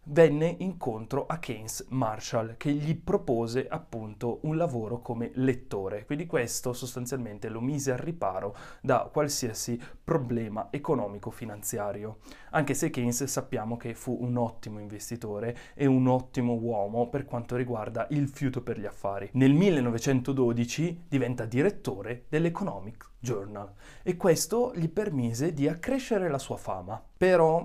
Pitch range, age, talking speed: 120-150 Hz, 20-39, 135 wpm